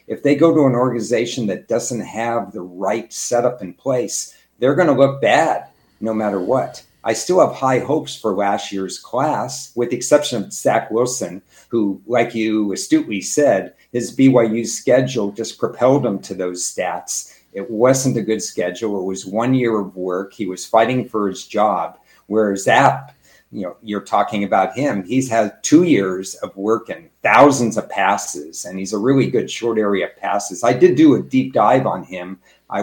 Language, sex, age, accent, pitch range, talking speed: English, male, 50-69, American, 100-130 Hz, 190 wpm